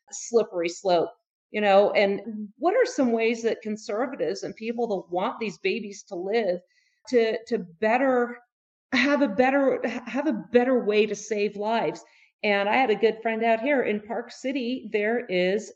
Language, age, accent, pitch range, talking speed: English, 40-59, American, 210-270 Hz, 175 wpm